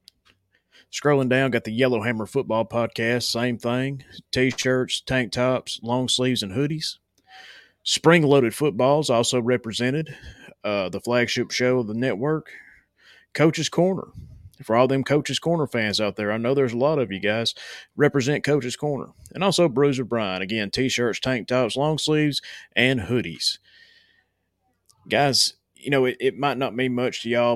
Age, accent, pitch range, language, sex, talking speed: 30-49, American, 105-130 Hz, English, male, 155 wpm